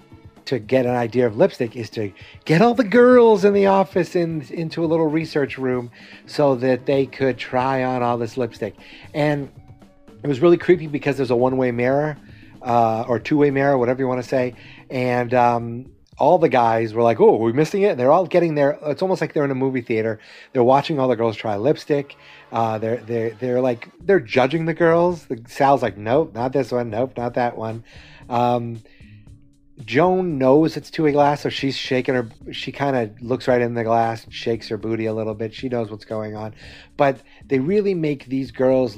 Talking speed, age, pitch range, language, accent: 210 wpm, 30-49, 115-150 Hz, English, American